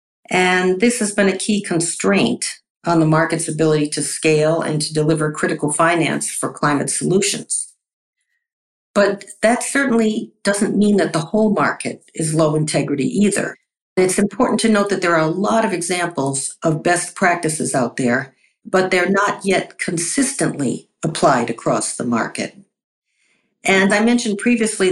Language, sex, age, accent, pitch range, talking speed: English, female, 50-69, American, 145-190 Hz, 150 wpm